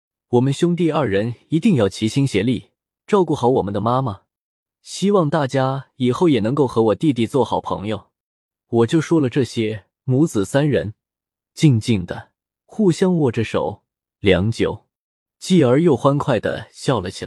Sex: male